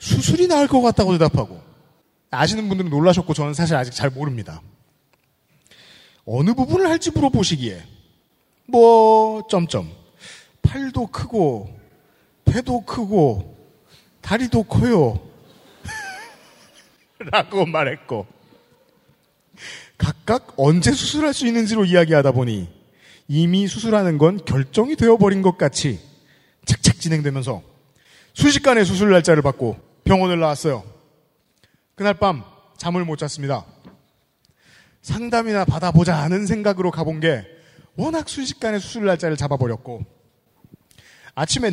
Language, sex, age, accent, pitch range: Korean, male, 40-59, native, 135-210 Hz